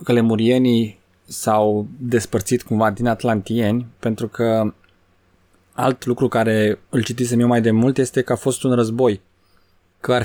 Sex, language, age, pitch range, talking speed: male, Romanian, 20-39, 95-120 Hz, 150 wpm